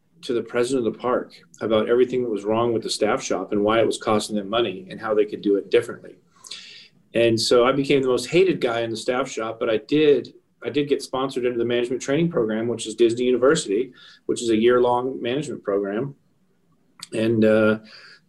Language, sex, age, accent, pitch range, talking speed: English, male, 40-59, American, 110-135 Hz, 220 wpm